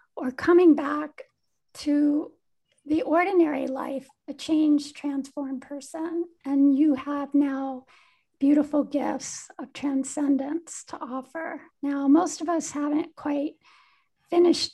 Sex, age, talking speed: female, 50-69, 115 wpm